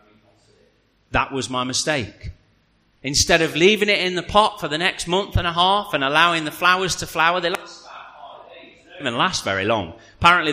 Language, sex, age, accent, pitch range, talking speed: English, male, 40-59, British, 105-175 Hz, 175 wpm